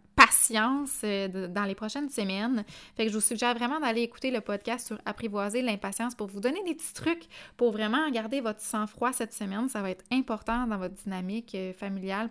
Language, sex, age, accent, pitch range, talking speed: French, female, 20-39, Canadian, 200-245 Hz, 190 wpm